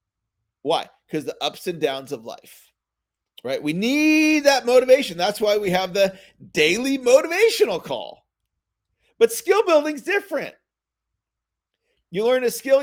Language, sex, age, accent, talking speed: English, male, 40-59, American, 135 wpm